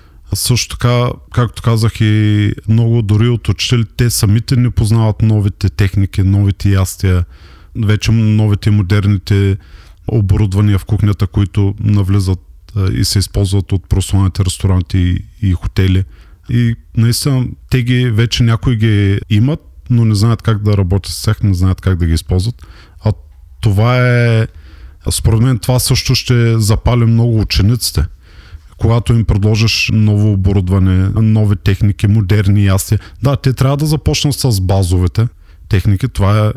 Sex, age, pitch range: male, 40-59, 95-115 Hz